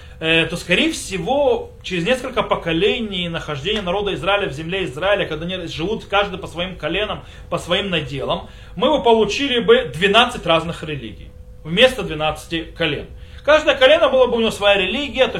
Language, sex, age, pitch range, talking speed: Russian, male, 30-49, 160-230 Hz, 160 wpm